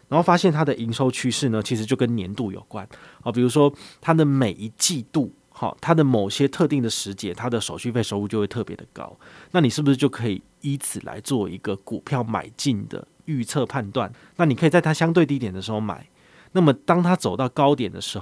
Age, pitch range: 30-49, 105-140 Hz